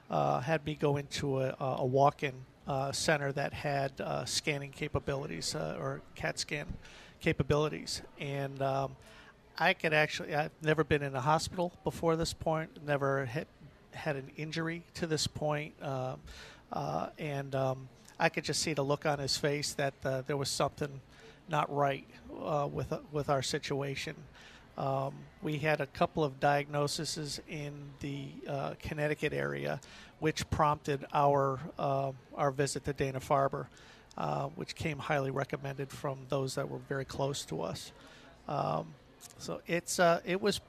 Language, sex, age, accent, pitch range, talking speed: English, male, 50-69, American, 140-155 Hz, 160 wpm